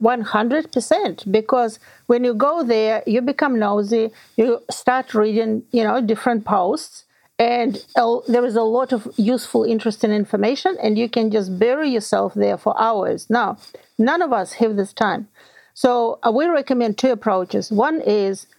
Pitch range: 220-260 Hz